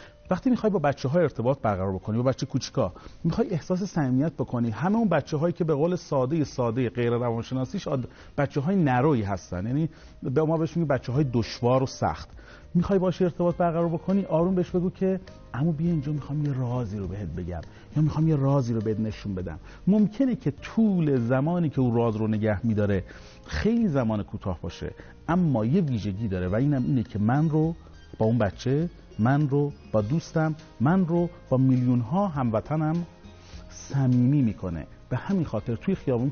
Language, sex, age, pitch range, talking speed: Persian, male, 40-59, 110-170 Hz, 180 wpm